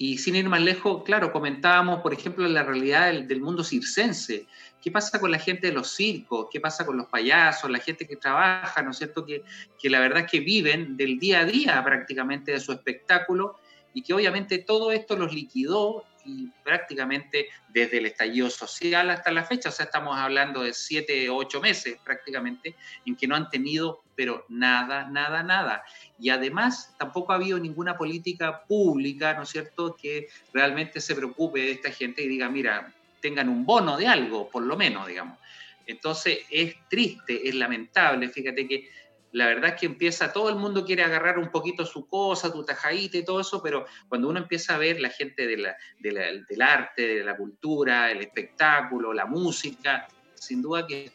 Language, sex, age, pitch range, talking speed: Spanish, male, 30-49, 135-185 Hz, 190 wpm